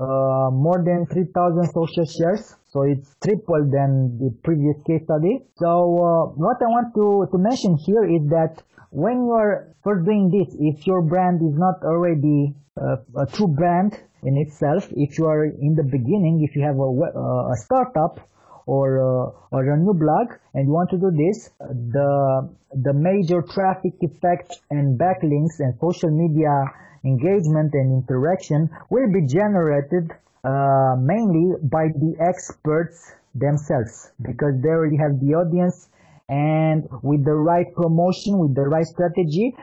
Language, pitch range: English, 140-175 Hz